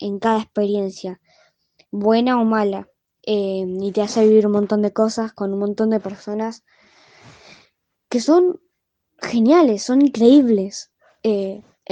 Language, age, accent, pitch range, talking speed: Spanish, 20-39, Argentinian, 210-245 Hz, 130 wpm